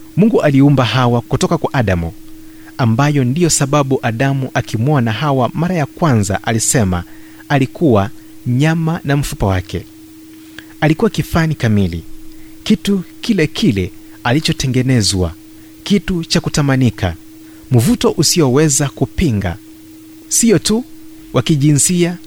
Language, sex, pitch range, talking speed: Swahili, male, 115-165 Hz, 100 wpm